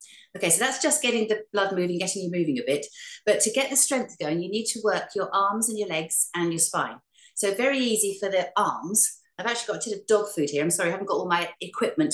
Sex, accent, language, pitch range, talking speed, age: female, British, English, 180-240 Hz, 265 wpm, 40-59